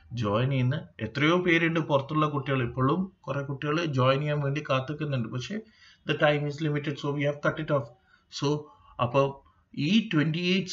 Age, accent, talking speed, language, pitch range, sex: 30-49, native, 140 wpm, Malayalam, 115-170 Hz, male